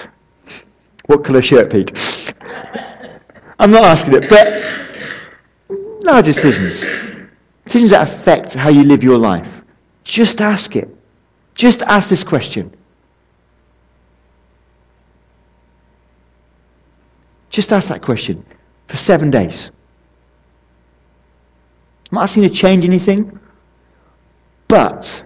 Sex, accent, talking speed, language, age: male, British, 95 wpm, English, 50-69